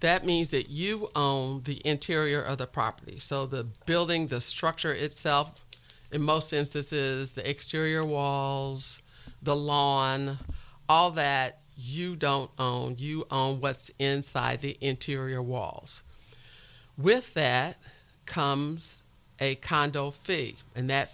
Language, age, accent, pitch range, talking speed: English, 50-69, American, 130-150 Hz, 125 wpm